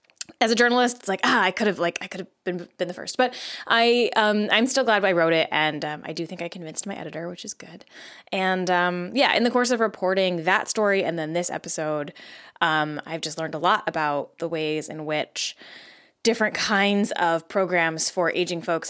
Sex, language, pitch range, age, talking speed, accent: female, English, 160-200 Hz, 20-39, 220 wpm, American